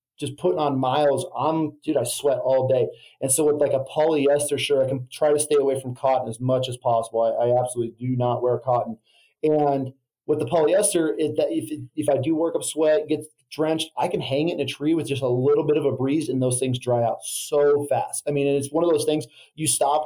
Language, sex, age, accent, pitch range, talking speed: English, male, 30-49, American, 130-150 Hz, 250 wpm